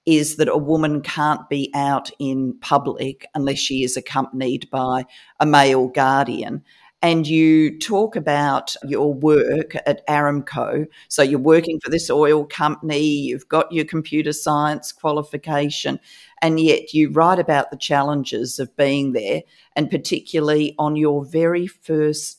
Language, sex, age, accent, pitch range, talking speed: English, female, 50-69, Australian, 140-160 Hz, 145 wpm